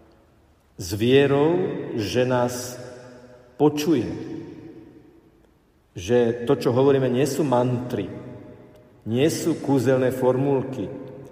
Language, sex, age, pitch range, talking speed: Slovak, male, 50-69, 120-140 Hz, 85 wpm